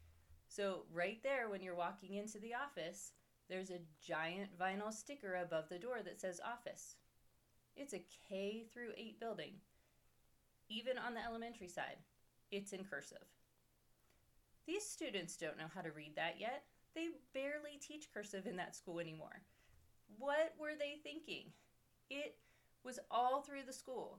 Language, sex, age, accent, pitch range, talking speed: English, female, 30-49, American, 175-255 Hz, 150 wpm